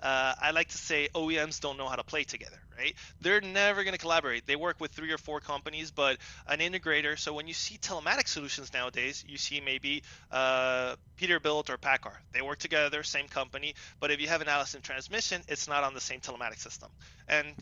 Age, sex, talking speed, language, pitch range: 20-39, male, 210 wpm, English, 130-155 Hz